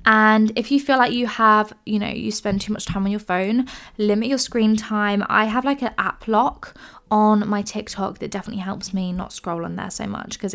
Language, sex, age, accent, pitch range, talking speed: English, female, 10-29, British, 195-235 Hz, 235 wpm